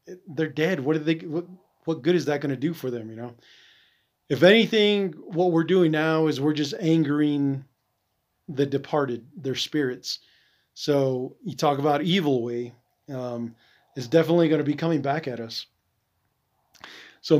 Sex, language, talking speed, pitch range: male, English, 165 wpm, 130-160 Hz